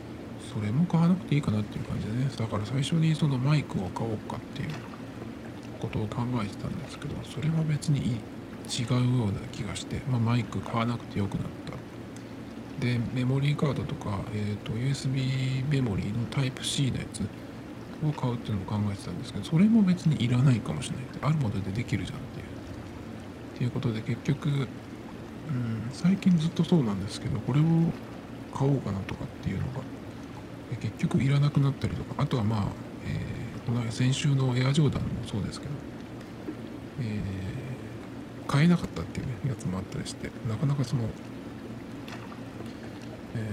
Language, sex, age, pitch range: Japanese, male, 50-69, 110-140 Hz